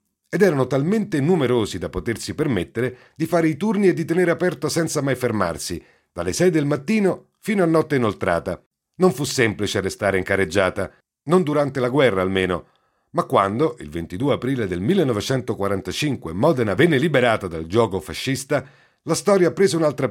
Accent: native